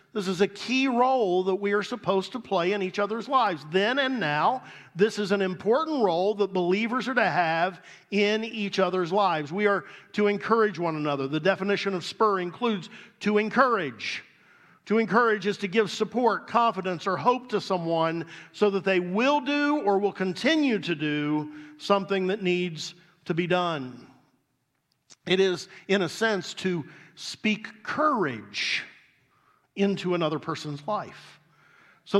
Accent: American